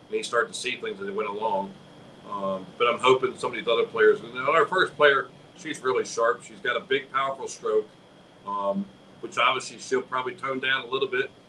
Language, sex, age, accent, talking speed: English, male, 40-59, American, 230 wpm